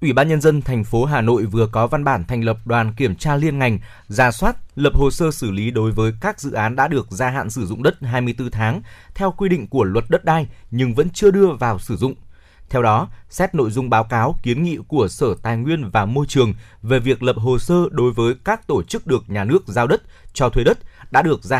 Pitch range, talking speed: 110-145 Hz, 255 wpm